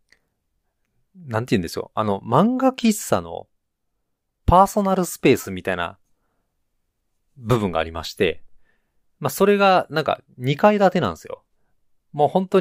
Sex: male